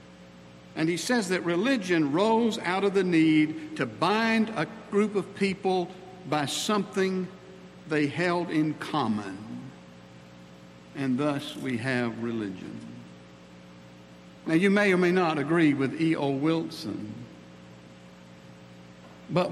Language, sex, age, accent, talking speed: English, male, 60-79, American, 115 wpm